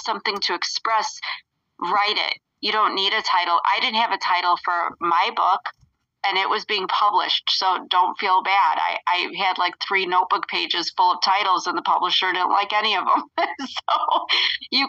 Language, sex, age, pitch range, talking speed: English, female, 30-49, 175-210 Hz, 190 wpm